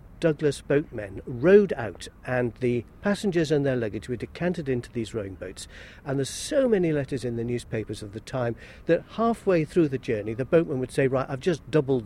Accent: British